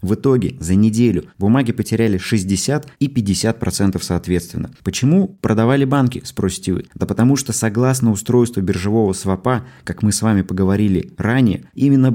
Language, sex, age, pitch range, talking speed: Russian, male, 20-39, 95-125 Hz, 145 wpm